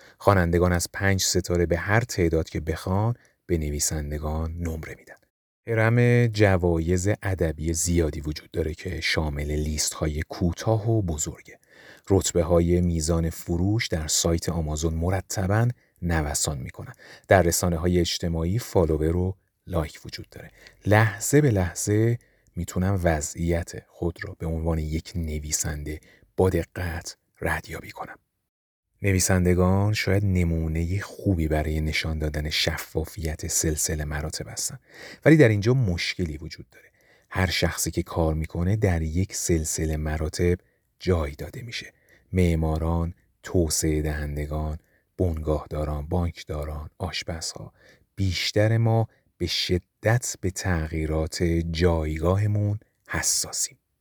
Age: 30-49